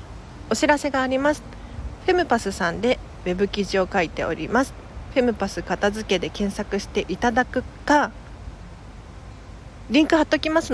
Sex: female